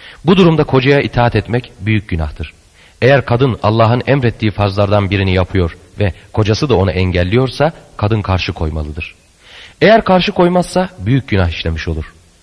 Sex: male